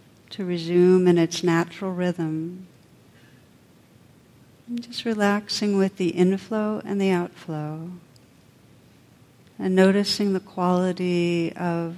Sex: female